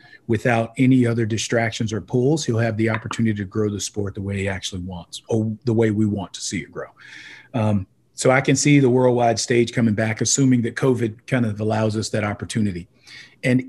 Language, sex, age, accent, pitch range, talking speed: English, male, 40-59, American, 110-130 Hz, 210 wpm